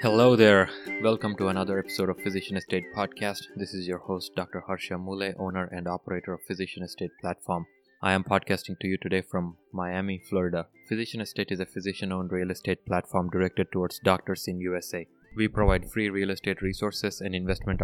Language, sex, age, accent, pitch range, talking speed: English, male, 20-39, Indian, 95-100 Hz, 180 wpm